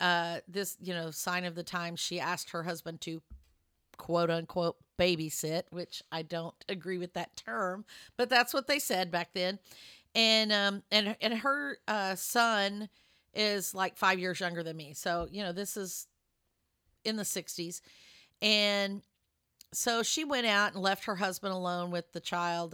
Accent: American